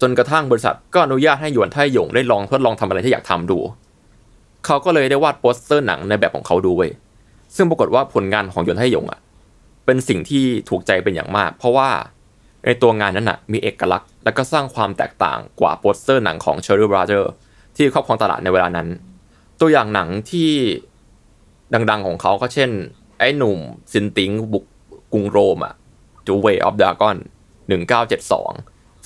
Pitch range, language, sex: 100-135 Hz, Thai, male